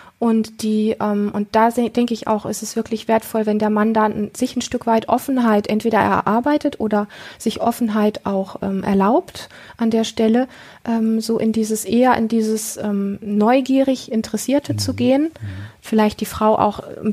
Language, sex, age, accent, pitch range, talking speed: German, female, 30-49, German, 205-235 Hz, 160 wpm